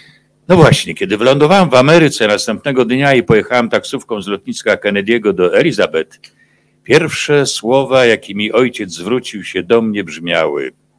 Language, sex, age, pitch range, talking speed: Polish, male, 60-79, 105-170 Hz, 135 wpm